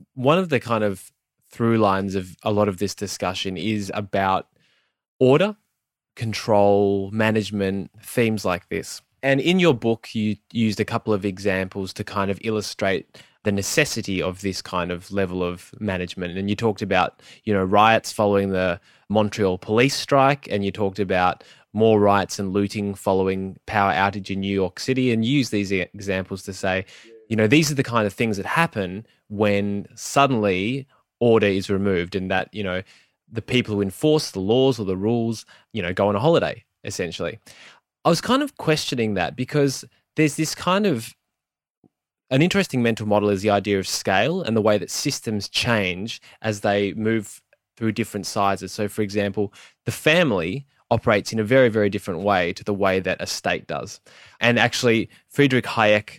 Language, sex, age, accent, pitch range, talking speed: English, male, 20-39, Australian, 100-120 Hz, 180 wpm